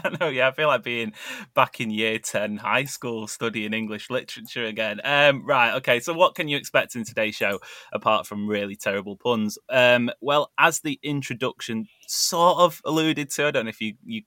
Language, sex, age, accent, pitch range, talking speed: English, male, 20-39, British, 110-150 Hz, 200 wpm